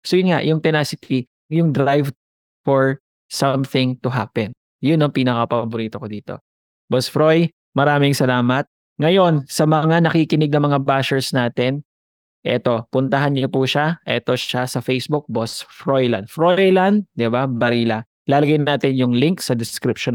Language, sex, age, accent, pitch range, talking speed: English, male, 20-39, Filipino, 115-145 Hz, 145 wpm